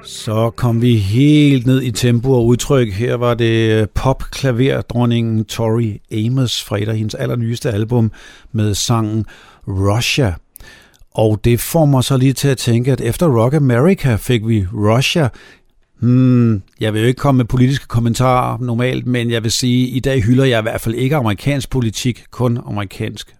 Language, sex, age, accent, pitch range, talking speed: Danish, male, 60-79, native, 115-150 Hz, 170 wpm